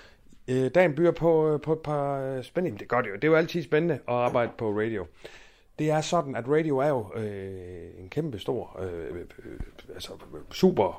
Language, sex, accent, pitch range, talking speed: Danish, male, native, 105-150 Hz, 200 wpm